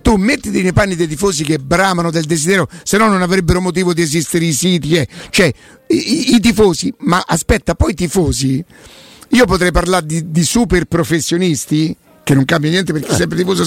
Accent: native